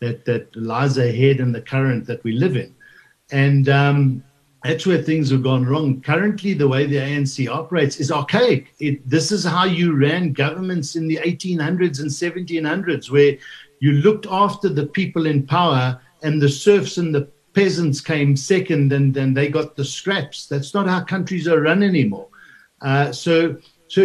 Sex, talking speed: male, 175 wpm